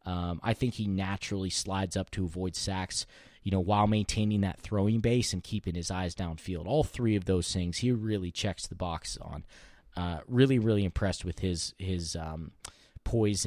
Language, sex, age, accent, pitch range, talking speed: English, male, 20-39, American, 95-110 Hz, 185 wpm